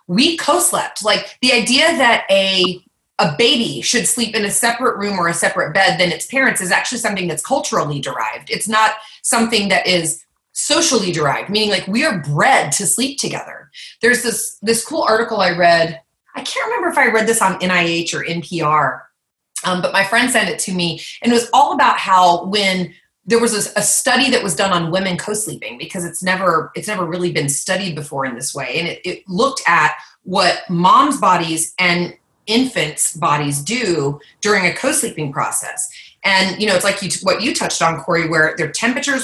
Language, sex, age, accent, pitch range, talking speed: English, female, 30-49, American, 170-235 Hz, 195 wpm